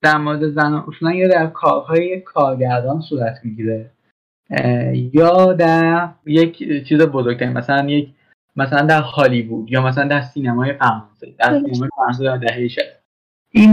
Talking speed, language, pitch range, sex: 120 wpm, Persian, 135-175 Hz, male